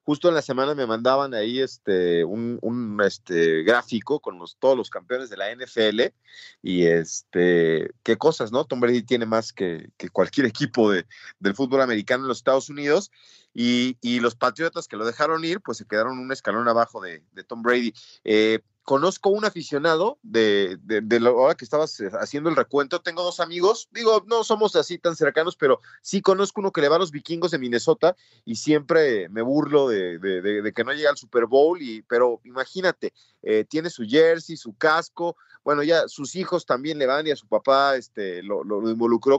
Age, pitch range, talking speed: 30-49, 120-170 Hz, 200 wpm